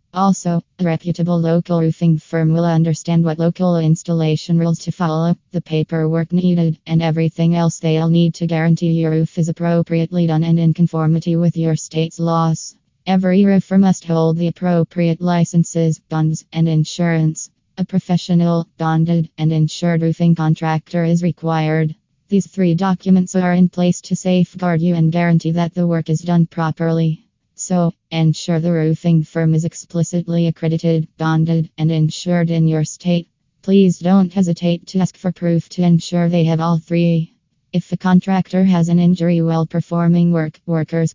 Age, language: 20-39, English